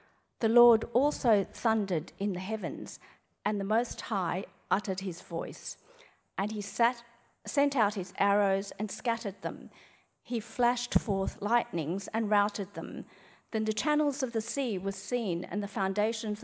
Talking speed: 150 wpm